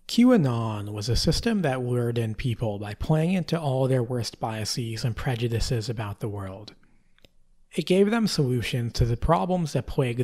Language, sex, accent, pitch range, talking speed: English, male, American, 110-150 Hz, 170 wpm